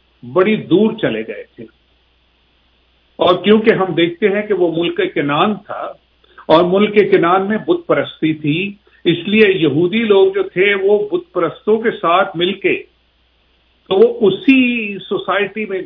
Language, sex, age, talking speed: English, male, 50-69, 145 wpm